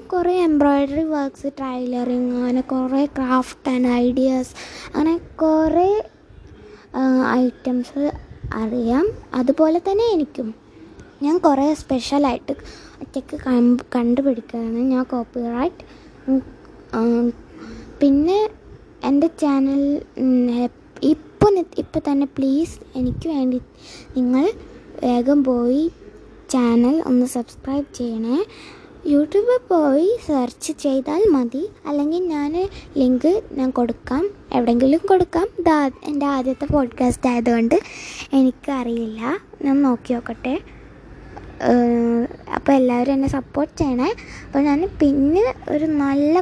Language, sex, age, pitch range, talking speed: Malayalam, female, 20-39, 255-325 Hz, 95 wpm